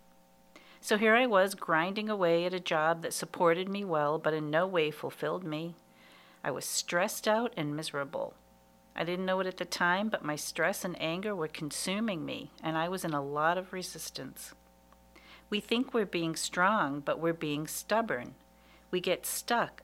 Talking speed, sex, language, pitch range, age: 180 wpm, female, English, 140-185 Hz, 50-69